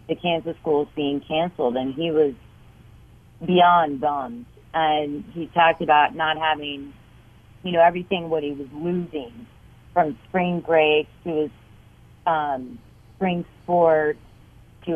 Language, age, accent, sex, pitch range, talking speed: English, 30-49, American, female, 140-175 Hz, 130 wpm